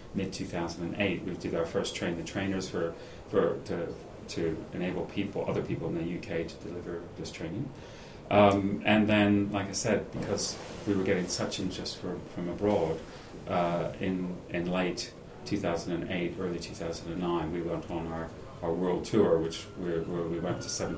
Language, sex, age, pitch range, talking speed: English, male, 30-49, 80-100 Hz, 170 wpm